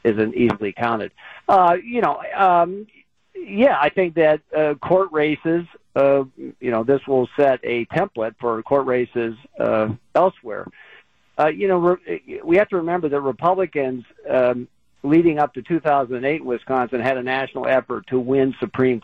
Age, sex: 50-69, male